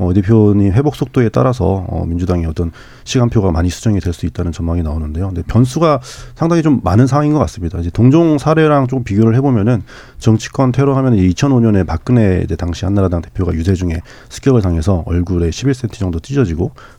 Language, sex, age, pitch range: Korean, male, 40-59, 90-120 Hz